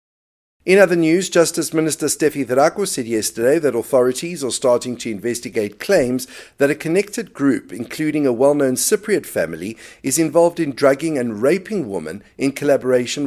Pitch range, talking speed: 120-170 Hz, 155 wpm